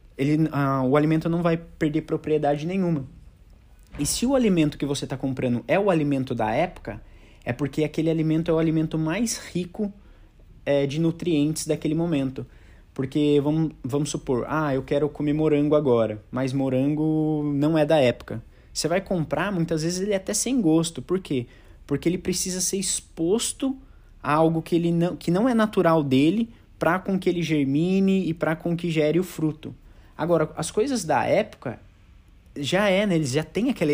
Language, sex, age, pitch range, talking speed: Portuguese, male, 20-39, 135-170 Hz, 175 wpm